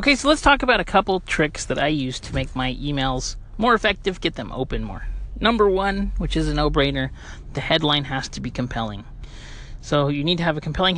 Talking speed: 225 wpm